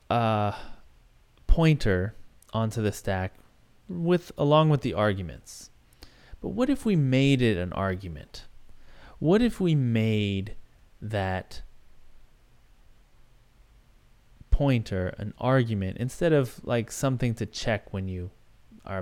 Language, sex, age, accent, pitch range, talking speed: English, male, 30-49, American, 95-125 Hz, 110 wpm